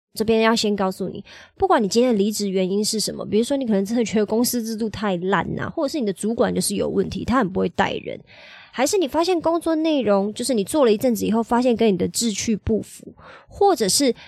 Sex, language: male, Chinese